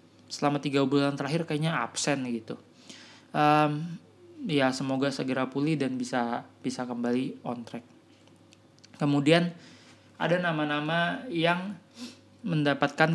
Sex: male